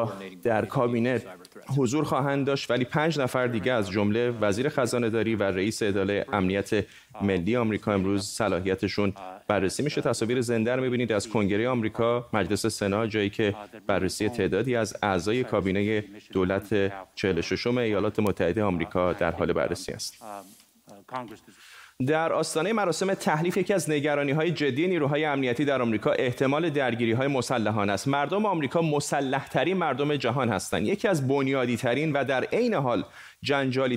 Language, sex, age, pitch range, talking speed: Persian, male, 30-49, 110-150 Hz, 145 wpm